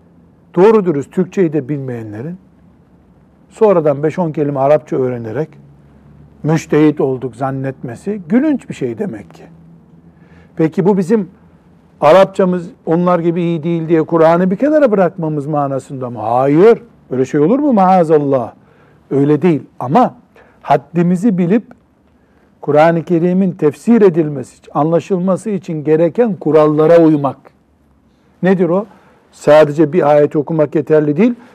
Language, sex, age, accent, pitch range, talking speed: Turkish, male, 60-79, native, 145-190 Hz, 115 wpm